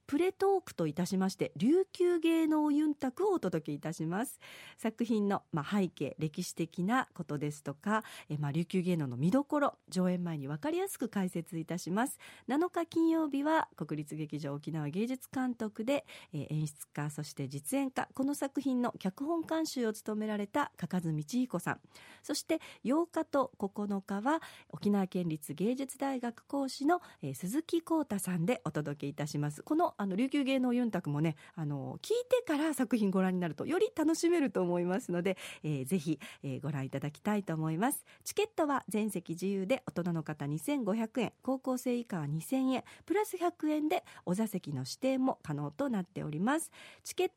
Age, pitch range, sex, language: 40-59, 165-280 Hz, female, Japanese